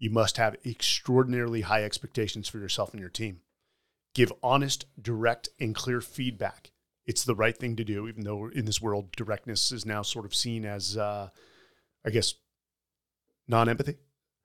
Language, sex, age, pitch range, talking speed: English, male, 30-49, 110-130 Hz, 160 wpm